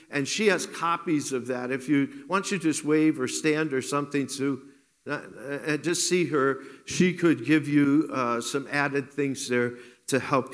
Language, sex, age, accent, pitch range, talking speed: English, male, 50-69, American, 145-195 Hz, 180 wpm